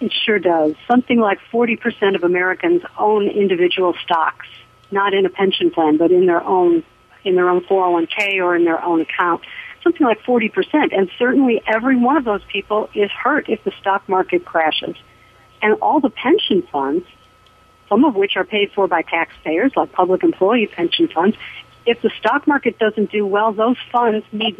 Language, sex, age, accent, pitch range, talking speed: English, female, 50-69, American, 180-235 Hz, 180 wpm